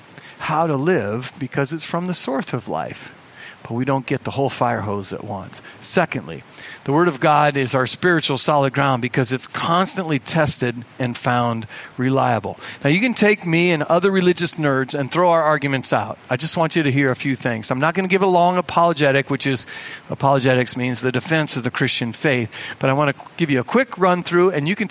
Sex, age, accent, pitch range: male, 50-69, American, 135-190 Hz